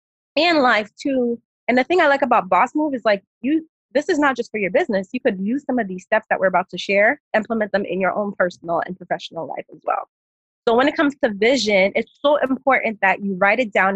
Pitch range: 205-275 Hz